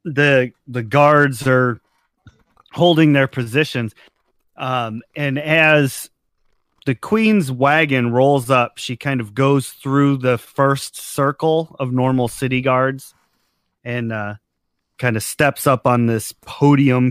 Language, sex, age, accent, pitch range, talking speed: English, male, 30-49, American, 120-150 Hz, 125 wpm